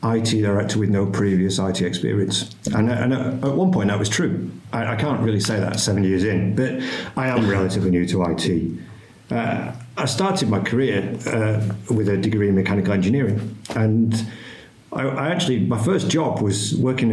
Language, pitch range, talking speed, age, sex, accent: English, 95-115 Hz, 180 wpm, 50-69, male, British